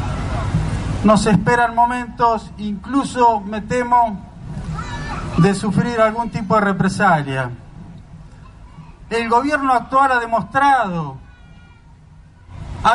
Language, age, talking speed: Spanish, 40-59, 85 wpm